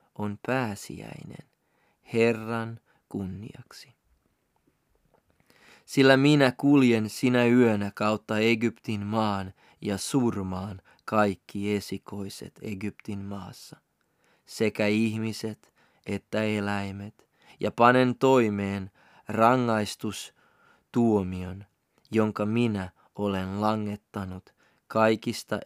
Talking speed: 75 wpm